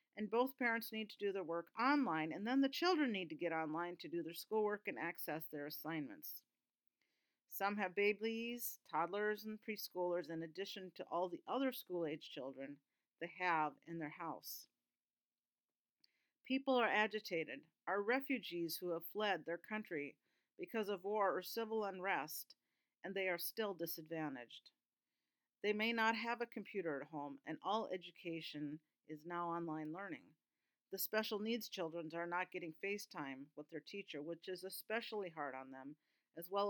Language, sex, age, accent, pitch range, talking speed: English, female, 50-69, American, 165-215 Hz, 165 wpm